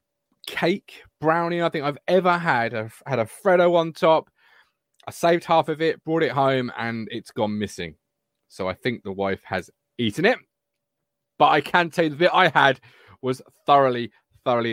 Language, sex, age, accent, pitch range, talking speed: English, male, 30-49, British, 130-170 Hz, 185 wpm